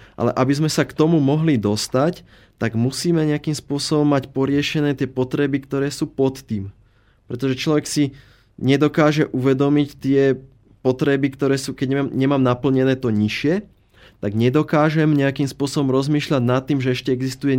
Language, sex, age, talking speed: Czech, male, 20-39, 155 wpm